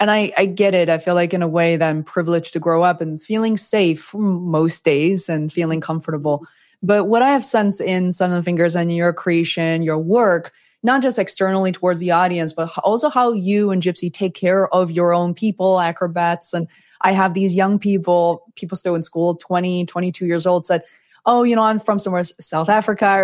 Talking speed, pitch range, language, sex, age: 210 wpm, 165-200 Hz, English, female, 20-39